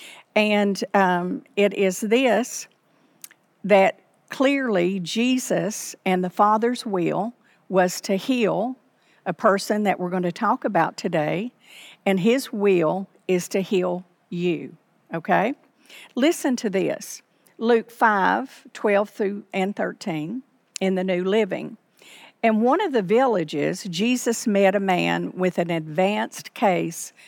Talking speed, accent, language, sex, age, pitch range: 130 wpm, American, English, female, 50-69, 185-235 Hz